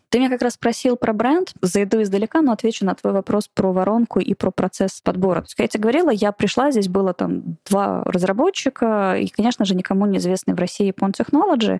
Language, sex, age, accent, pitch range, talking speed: Russian, female, 20-39, native, 185-230 Hz, 205 wpm